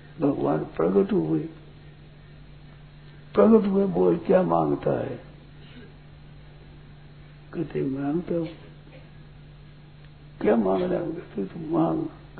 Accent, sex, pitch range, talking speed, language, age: native, male, 150-205 Hz, 80 wpm, Hindi, 60-79